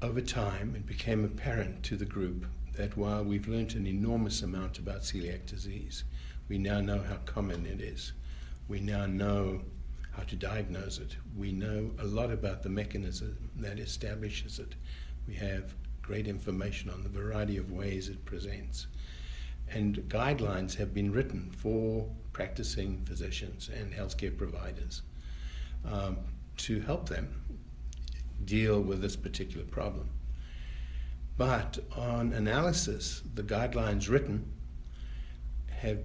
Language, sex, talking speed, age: English, male, 135 wpm, 60-79